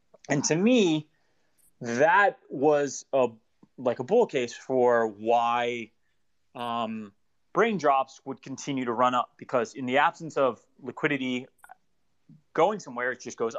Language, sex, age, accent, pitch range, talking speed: English, male, 30-49, American, 115-155 Hz, 135 wpm